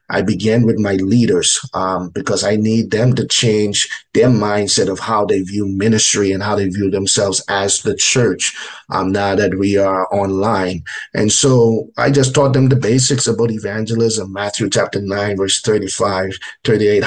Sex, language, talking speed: male, English, 170 wpm